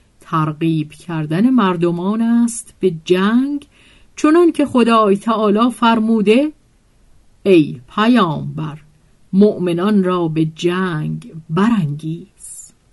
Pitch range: 175-245 Hz